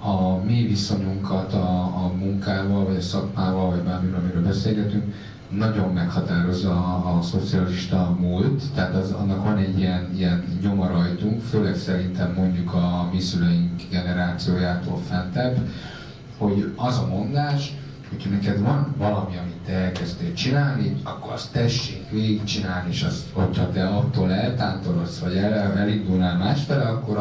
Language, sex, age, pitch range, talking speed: Hungarian, male, 30-49, 90-110 Hz, 130 wpm